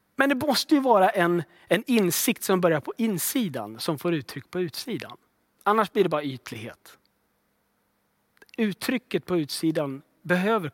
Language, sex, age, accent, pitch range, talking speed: Swedish, male, 30-49, native, 175-265 Hz, 145 wpm